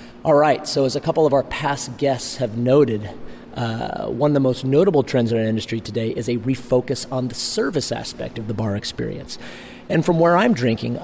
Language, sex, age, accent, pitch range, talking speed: English, male, 40-59, American, 115-140 Hz, 210 wpm